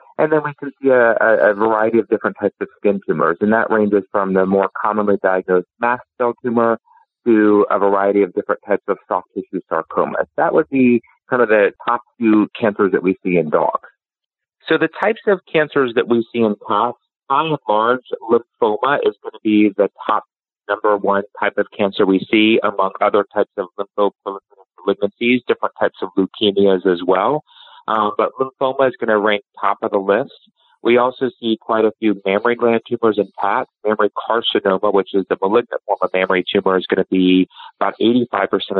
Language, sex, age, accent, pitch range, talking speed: English, male, 30-49, American, 100-120 Hz, 195 wpm